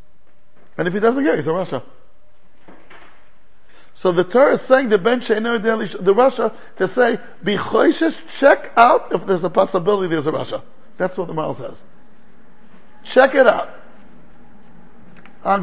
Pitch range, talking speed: 175-250 Hz, 155 wpm